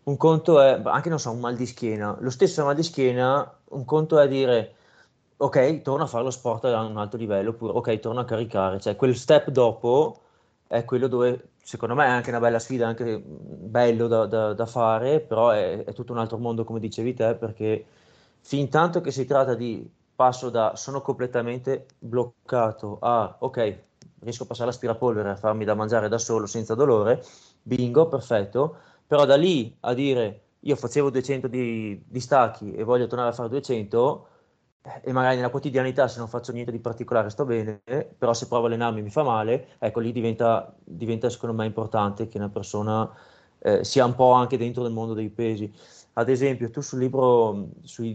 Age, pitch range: 30-49, 115-130 Hz